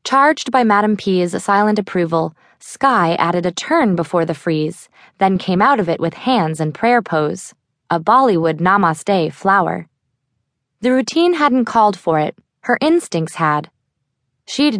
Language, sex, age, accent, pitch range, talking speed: English, female, 20-39, American, 160-210 Hz, 150 wpm